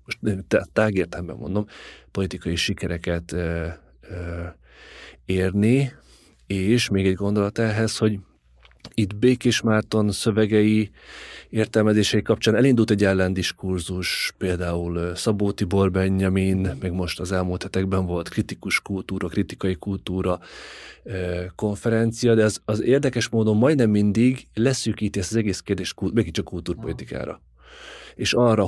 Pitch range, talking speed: 95-110 Hz, 120 wpm